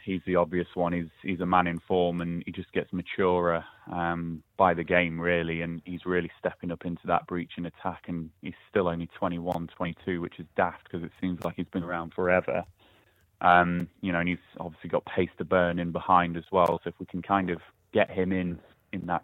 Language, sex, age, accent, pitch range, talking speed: English, male, 20-39, British, 85-95 Hz, 225 wpm